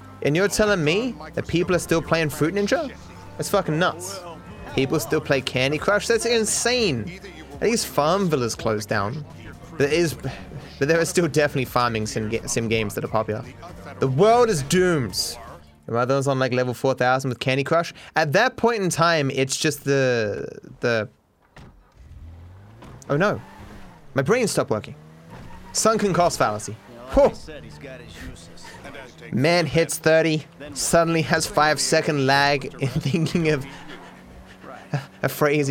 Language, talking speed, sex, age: English, 150 wpm, male, 20-39